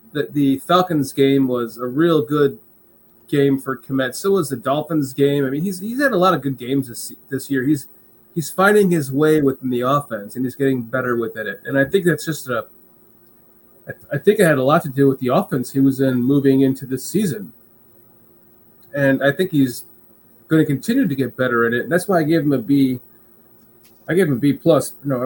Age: 30-49